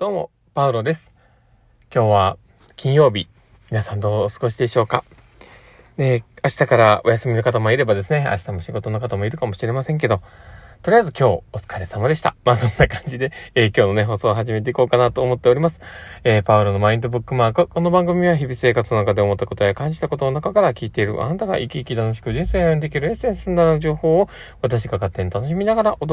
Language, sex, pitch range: Japanese, male, 100-140 Hz